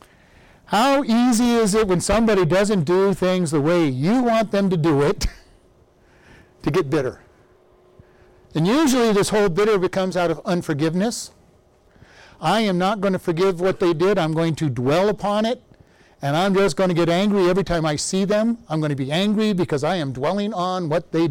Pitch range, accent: 160-220 Hz, American